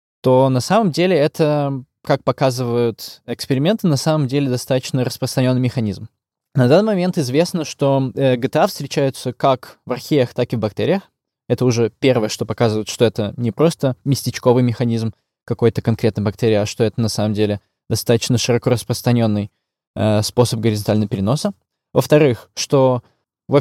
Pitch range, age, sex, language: 115-140 Hz, 20-39, male, Russian